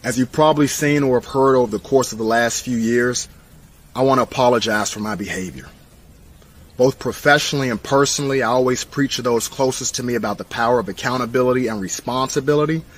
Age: 30-49